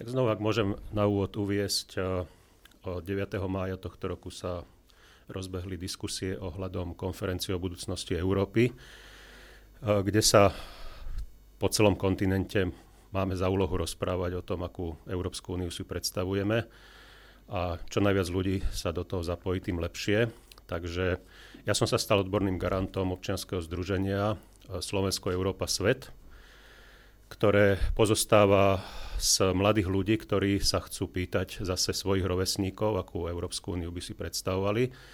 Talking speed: 130 wpm